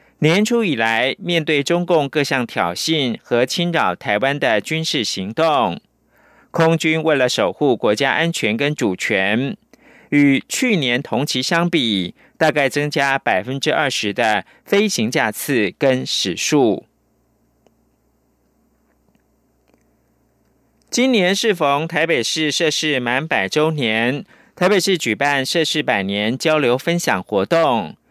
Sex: male